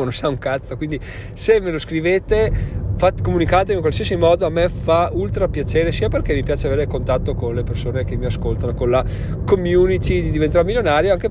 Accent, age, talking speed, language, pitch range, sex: native, 30-49, 195 wpm, Italian, 115-155 Hz, male